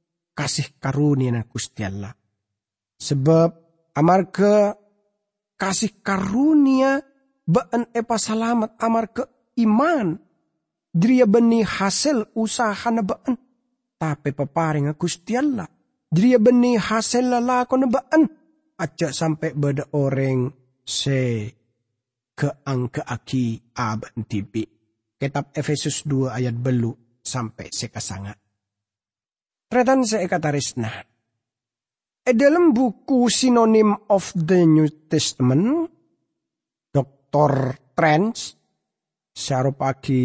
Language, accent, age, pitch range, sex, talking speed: English, Indonesian, 40-59, 130-225 Hz, male, 90 wpm